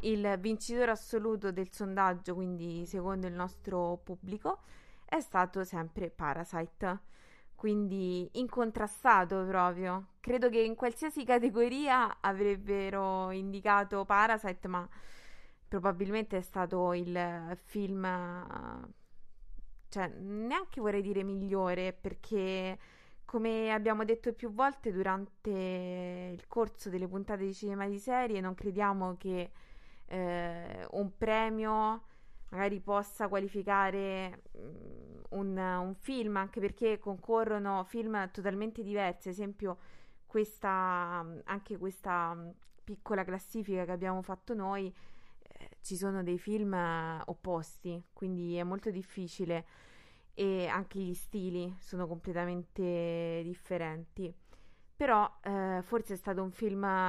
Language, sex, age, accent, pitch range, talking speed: Italian, female, 20-39, native, 180-210 Hz, 105 wpm